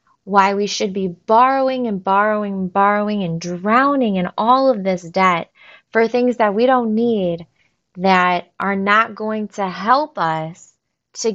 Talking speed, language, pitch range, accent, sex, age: 160 wpm, English, 185-235 Hz, American, female, 20-39